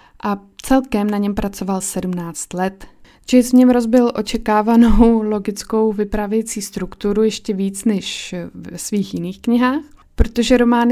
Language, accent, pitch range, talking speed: Czech, native, 185-230 Hz, 130 wpm